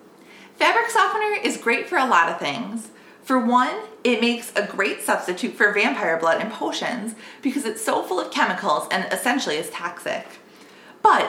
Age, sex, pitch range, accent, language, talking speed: 30-49, female, 210-280 Hz, American, English, 170 wpm